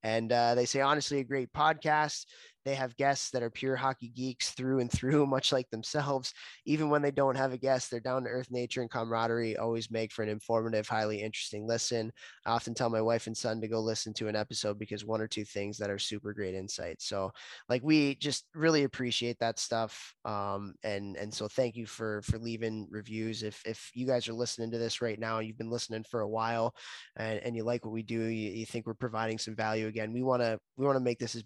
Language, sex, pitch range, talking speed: English, male, 110-135 Hz, 235 wpm